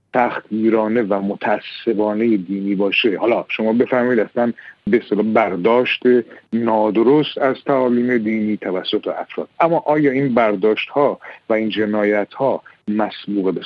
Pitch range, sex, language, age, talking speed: 105-145 Hz, male, Persian, 50-69, 125 wpm